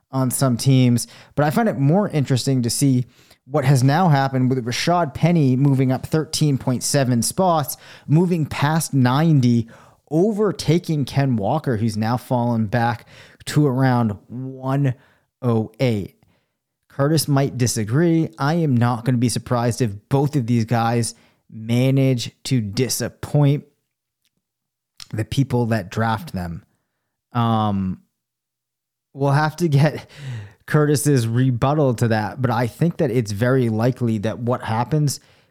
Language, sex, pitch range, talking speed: English, male, 115-140 Hz, 135 wpm